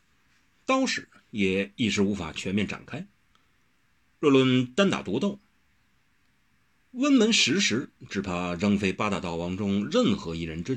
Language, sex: Chinese, male